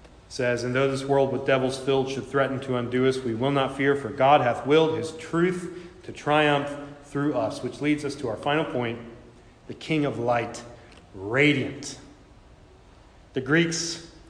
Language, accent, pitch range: English, American, 135-160 Hz